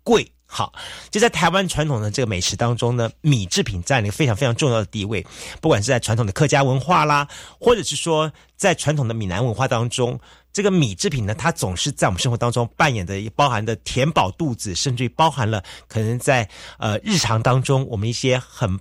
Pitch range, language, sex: 105-150 Hz, Chinese, male